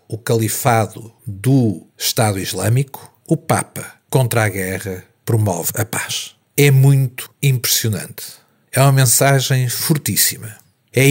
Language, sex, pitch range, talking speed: Portuguese, male, 105-130 Hz, 115 wpm